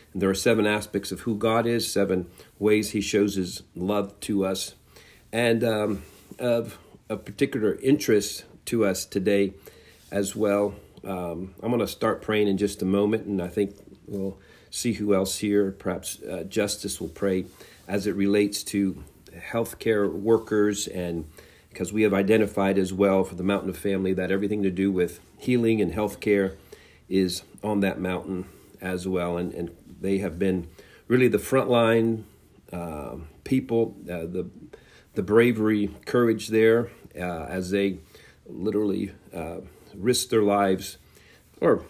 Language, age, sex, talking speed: English, 50-69, male, 155 wpm